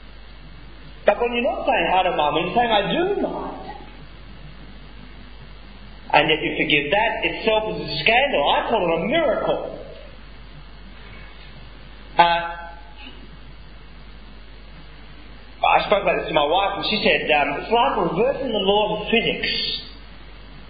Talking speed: 130 wpm